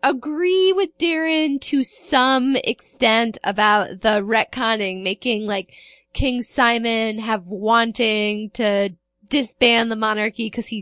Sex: female